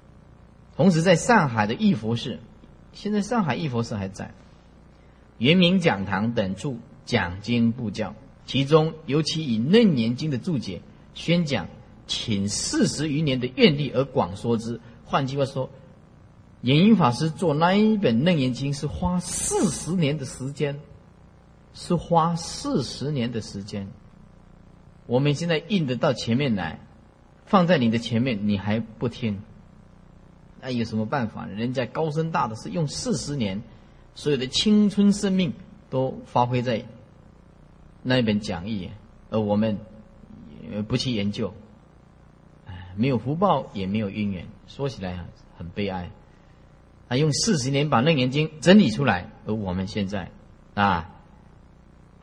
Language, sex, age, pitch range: Chinese, male, 30-49, 105-155 Hz